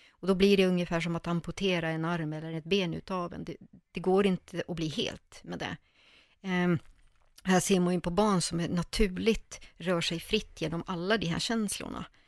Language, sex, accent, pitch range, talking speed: Swedish, female, native, 160-195 Hz, 205 wpm